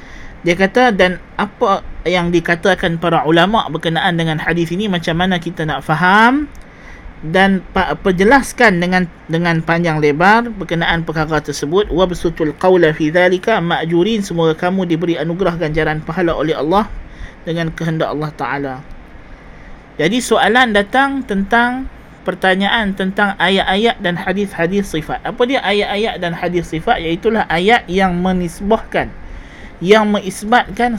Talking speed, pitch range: 125 wpm, 160-205 Hz